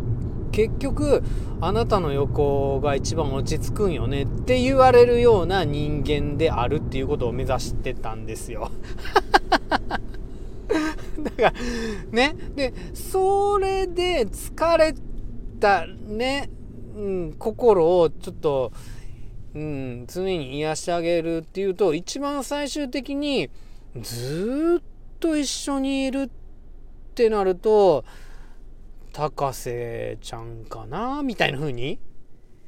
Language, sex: Japanese, male